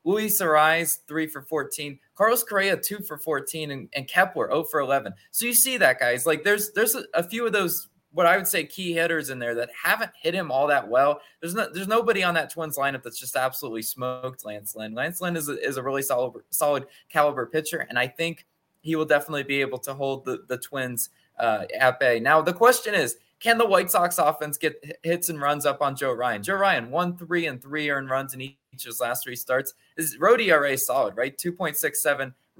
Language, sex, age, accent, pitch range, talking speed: English, male, 20-39, American, 135-175 Hz, 230 wpm